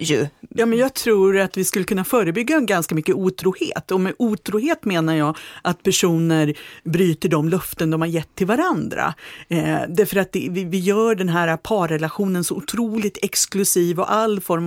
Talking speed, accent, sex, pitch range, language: 180 wpm, Swedish, female, 180-245 Hz, English